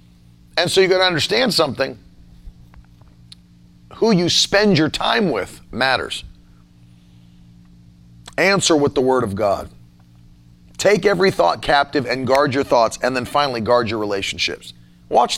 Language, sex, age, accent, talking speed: English, male, 40-59, American, 135 wpm